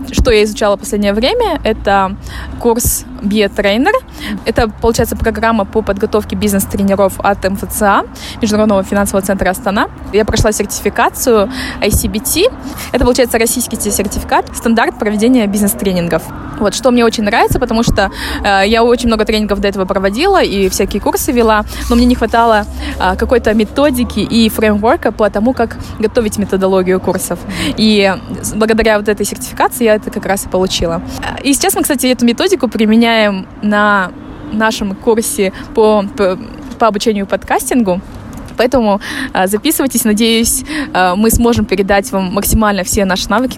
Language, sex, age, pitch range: Russian, female, 20-39, 200-235 Hz